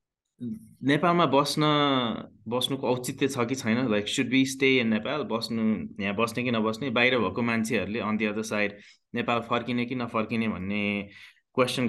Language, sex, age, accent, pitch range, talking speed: English, male, 20-39, Indian, 105-125 Hz, 125 wpm